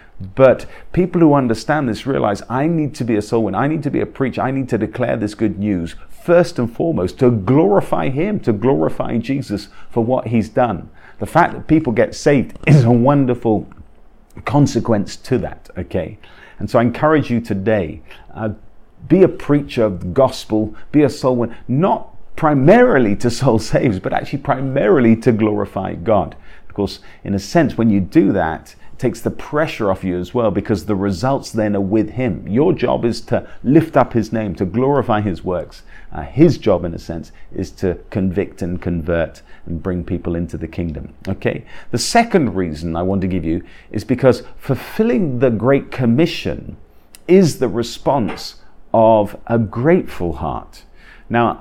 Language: English